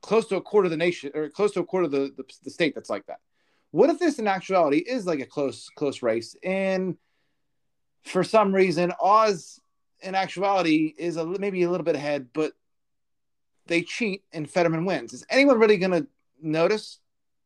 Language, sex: English, male